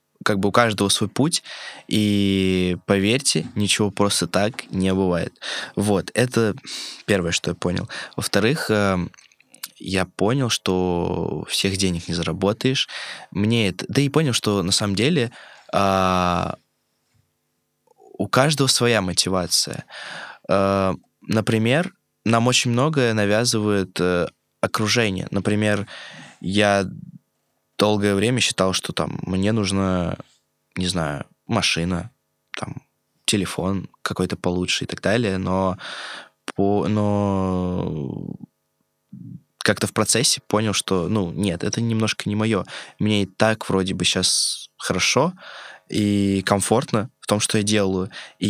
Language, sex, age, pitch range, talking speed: Russian, male, 20-39, 95-110 Hz, 120 wpm